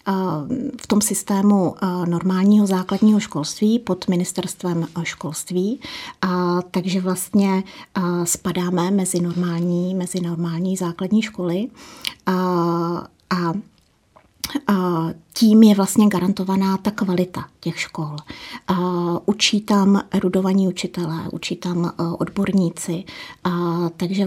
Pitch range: 175-215 Hz